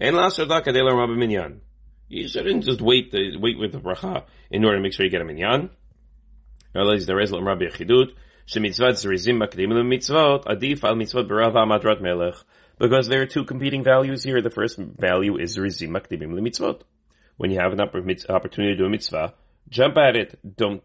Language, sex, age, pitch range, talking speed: English, male, 30-49, 85-120 Hz, 195 wpm